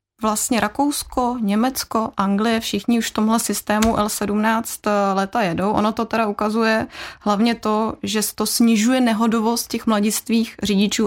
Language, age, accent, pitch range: Czech, 20-39, native, 195-225 Hz